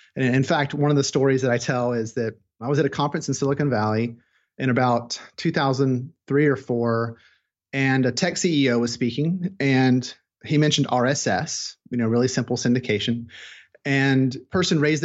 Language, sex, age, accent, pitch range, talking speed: English, male, 30-49, American, 120-155 Hz, 185 wpm